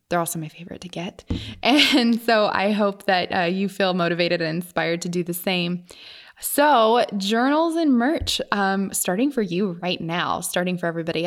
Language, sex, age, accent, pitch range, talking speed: English, female, 20-39, American, 180-230 Hz, 180 wpm